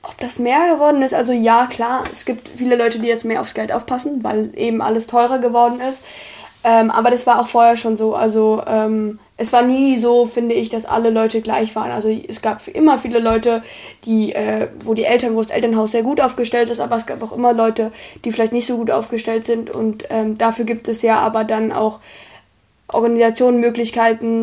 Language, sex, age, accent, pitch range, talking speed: German, female, 20-39, German, 225-240 Hz, 215 wpm